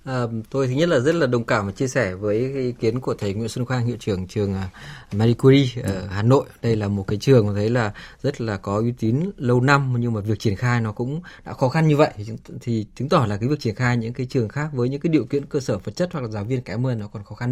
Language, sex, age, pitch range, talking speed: Vietnamese, male, 20-39, 110-145 Hz, 290 wpm